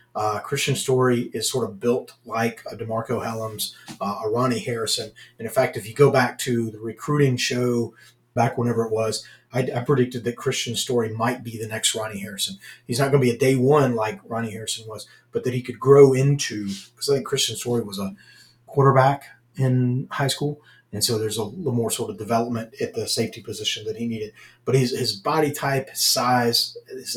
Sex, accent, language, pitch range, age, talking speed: male, American, English, 110-130 Hz, 30-49, 205 wpm